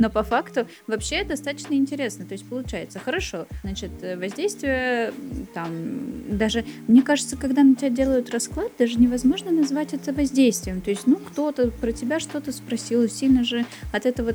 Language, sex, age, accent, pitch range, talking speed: Russian, female, 20-39, native, 200-265 Hz, 160 wpm